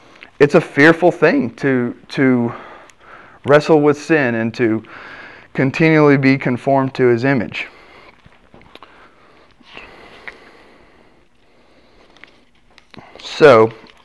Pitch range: 115-140 Hz